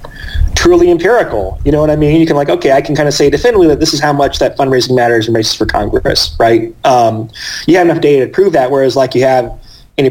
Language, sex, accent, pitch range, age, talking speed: English, male, American, 120-155 Hz, 30-49, 255 wpm